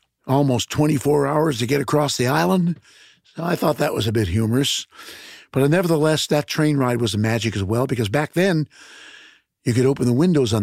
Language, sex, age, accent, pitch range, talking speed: English, male, 50-69, American, 110-140 Hz, 200 wpm